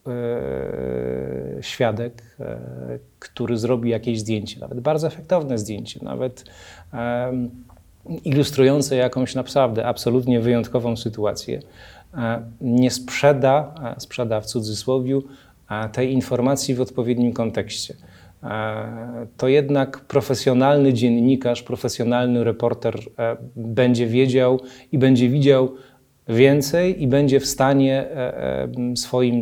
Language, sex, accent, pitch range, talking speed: Polish, male, native, 115-130 Hz, 90 wpm